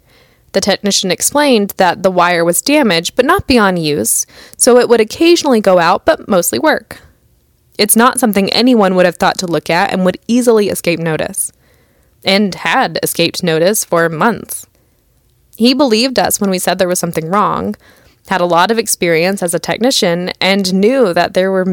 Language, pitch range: English, 175-235 Hz